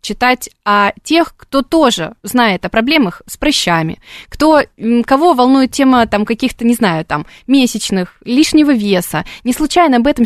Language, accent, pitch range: Russian, native, 210-275 Hz